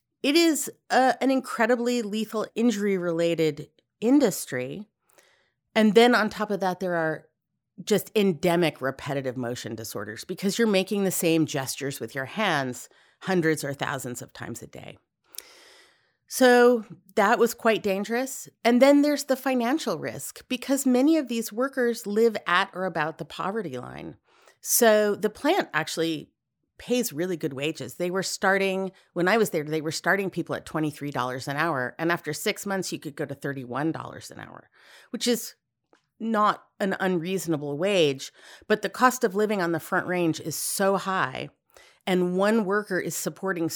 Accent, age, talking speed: American, 30-49, 160 wpm